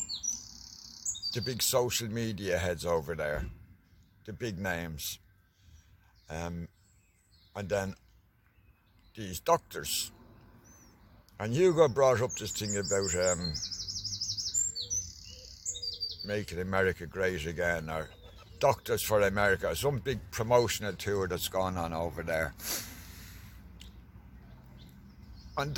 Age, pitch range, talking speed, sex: 60-79, 90-105 Hz, 95 wpm, male